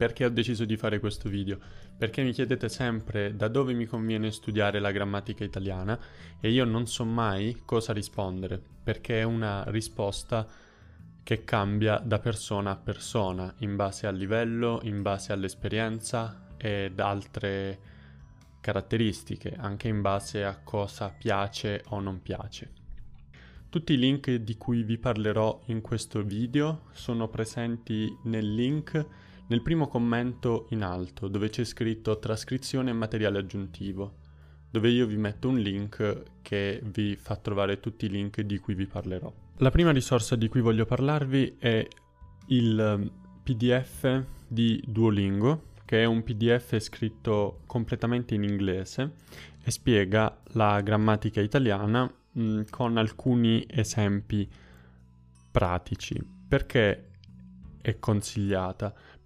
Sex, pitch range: male, 100-115 Hz